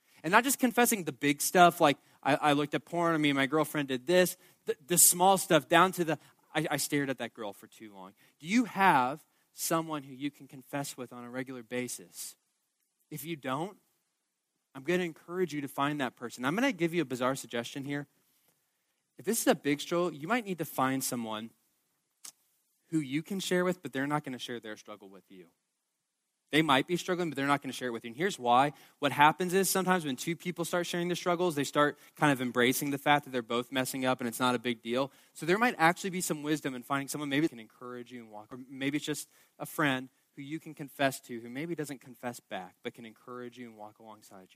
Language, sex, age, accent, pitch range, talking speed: English, male, 20-39, American, 130-175 Hz, 240 wpm